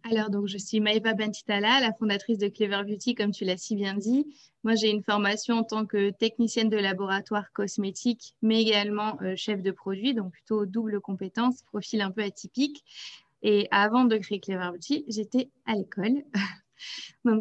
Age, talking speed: 20-39, 180 wpm